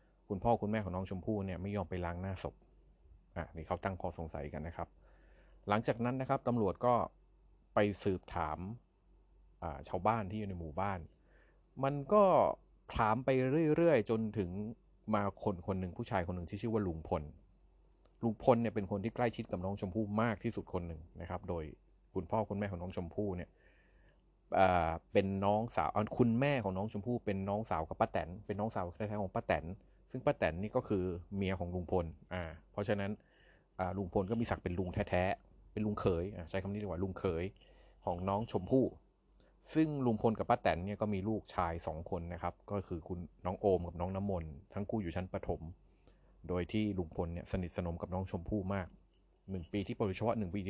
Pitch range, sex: 90-110 Hz, male